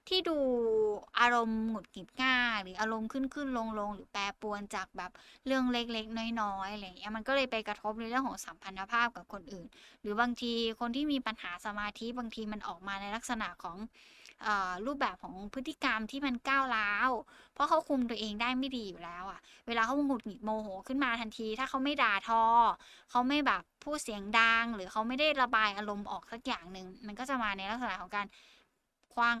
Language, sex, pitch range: Thai, female, 205-250 Hz